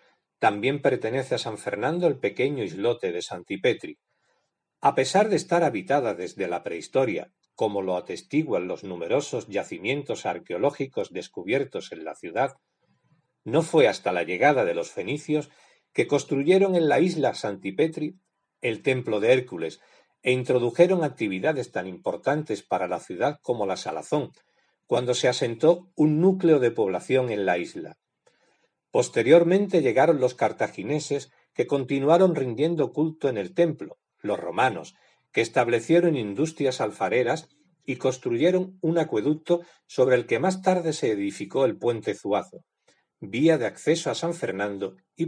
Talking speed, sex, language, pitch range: 140 wpm, male, Spanish, 125-175 Hz